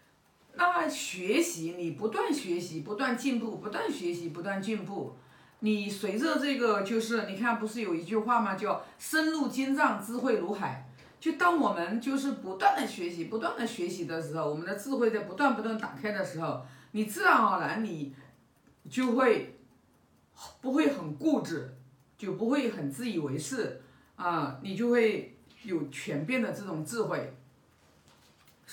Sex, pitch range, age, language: female, 155-240 Hz, 50-69, Chinese